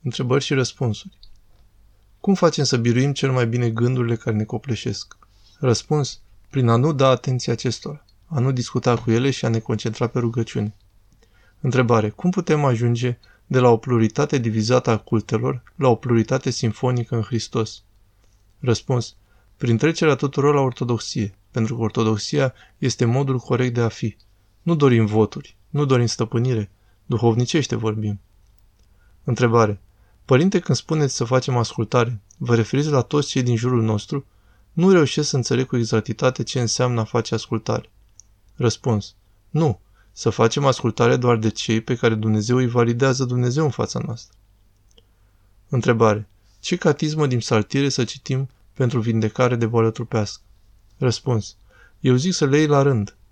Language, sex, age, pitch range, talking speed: Romanian, male, 20-39, 105-130 Hz, 150 wpm